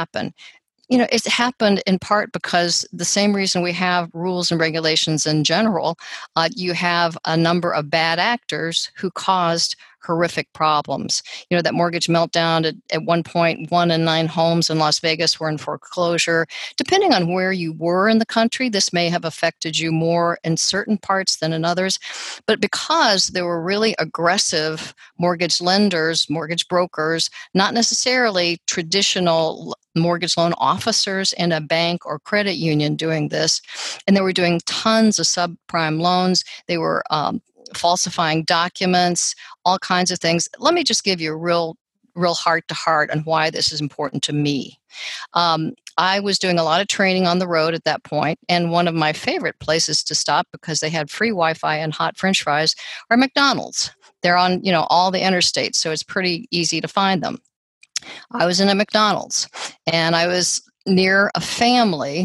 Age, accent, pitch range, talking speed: 50-69, American, 160-190 Hz, 175 wpm